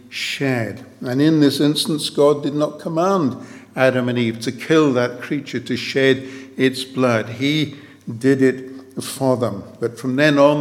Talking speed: 165 wpm